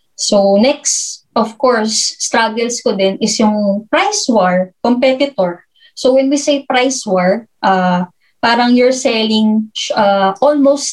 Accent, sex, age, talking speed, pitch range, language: Filipino, female, 20-39, 135 wpm, 205-270 Hz, English